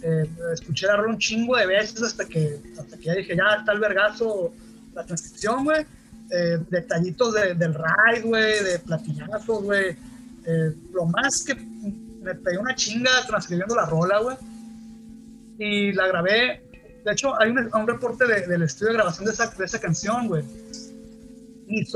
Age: 30-49